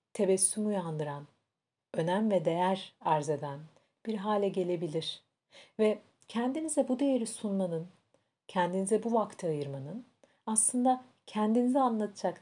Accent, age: native, 50-69